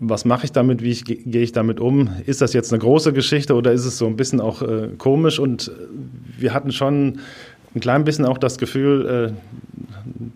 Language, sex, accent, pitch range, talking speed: German, male, German, 115-130 Hz, 205 wpm